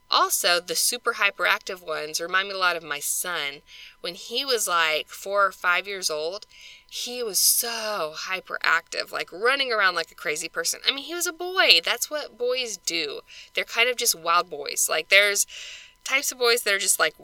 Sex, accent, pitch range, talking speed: female, American, 170-240 Hz, 200 wpm